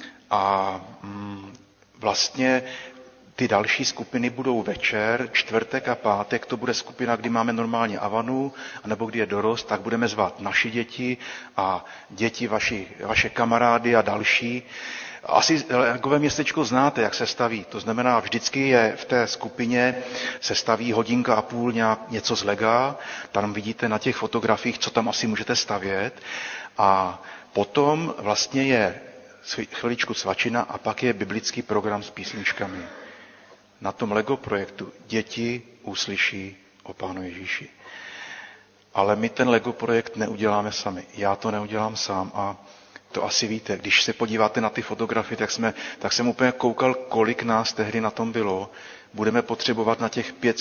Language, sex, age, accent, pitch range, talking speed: Czech, male, 40-59, native, 105-120 Hz, 150 wpm